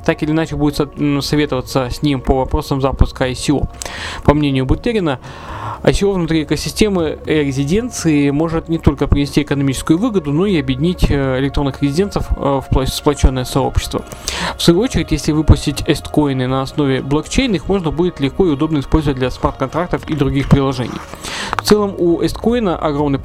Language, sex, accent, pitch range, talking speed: Russian, male, native, 135-165 Hz, 150 wpm